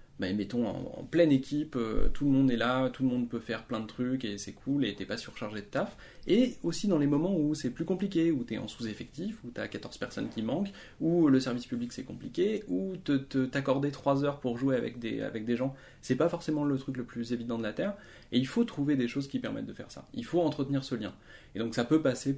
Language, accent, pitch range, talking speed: French, French, 115-155 Hz, 255 wpm